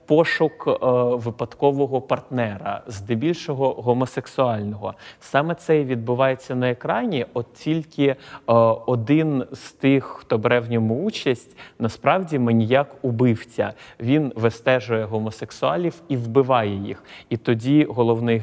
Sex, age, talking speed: male, 30-49, 115 wpm